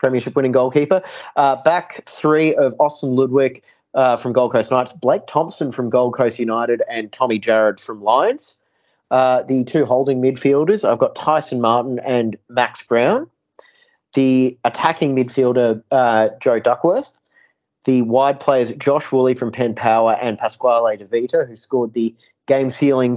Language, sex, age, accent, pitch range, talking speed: English, male, 30-49, Australian, 115-135 Hz, 150 wpm